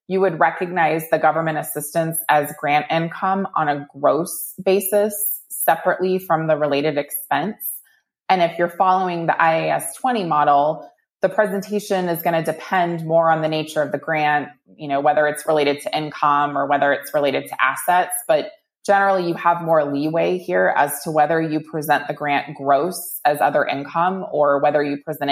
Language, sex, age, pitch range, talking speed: English, female, 20-39, 145-170 Hz, 170 wpm